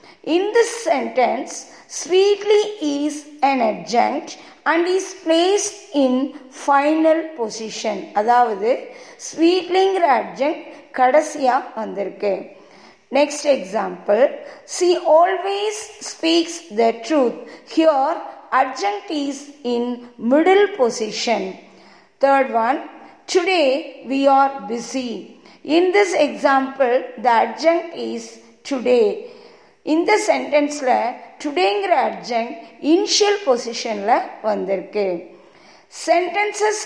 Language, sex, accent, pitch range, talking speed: Tamil, female, native, 250-360 Hz, 90 wpm